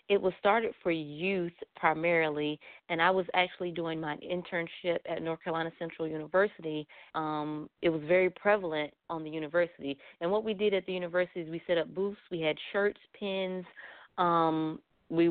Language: English